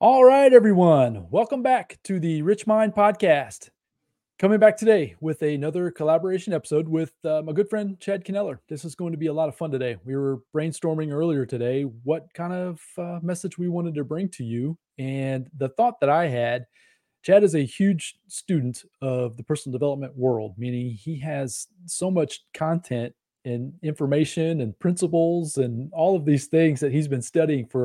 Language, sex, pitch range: English, male, 135-175 Hz